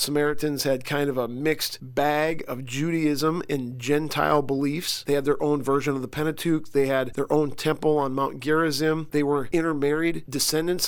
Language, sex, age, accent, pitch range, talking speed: English, male, 40-59, American, 135-155 Hz, 175 wpm